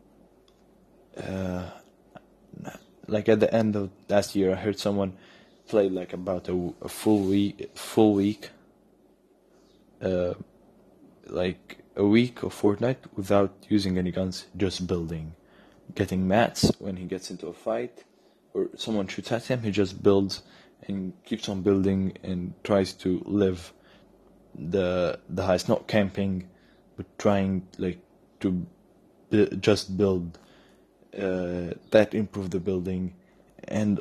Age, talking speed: 20-39, 130 wpm